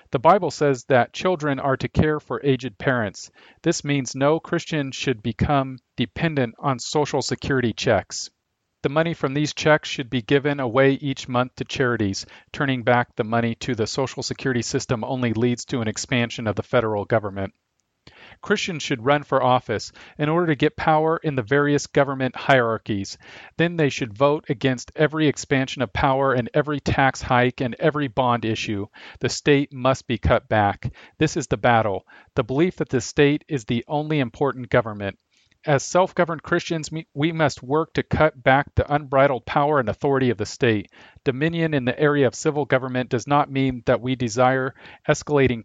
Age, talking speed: 40-59, 180 wpm